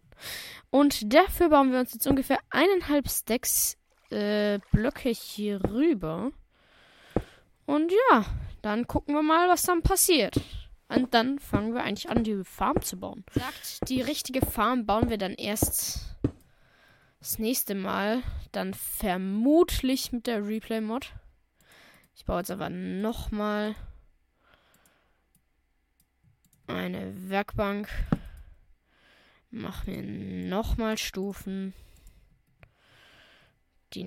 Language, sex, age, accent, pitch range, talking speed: German, female, 10-29, German, 175-260 Hz, 105 wpm